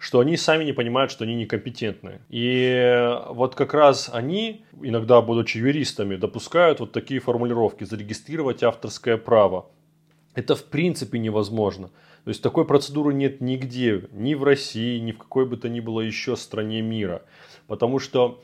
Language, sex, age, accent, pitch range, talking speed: Russian, male, 20-39, native, 110-135 Hz, 155 wpm